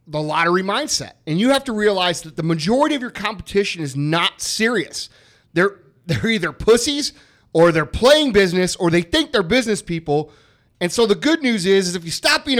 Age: 30-49